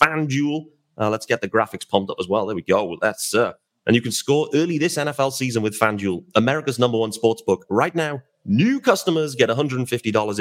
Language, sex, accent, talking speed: English, male, British, 210 wpm